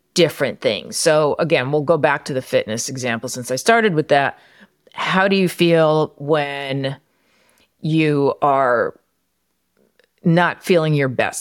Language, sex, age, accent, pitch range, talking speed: English, female, 40-59, American, 140-180 Hz, 140 wpm